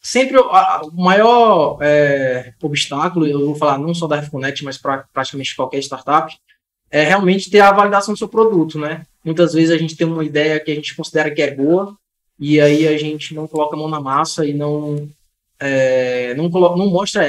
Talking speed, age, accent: 180 wpm, 20-39, Brazilian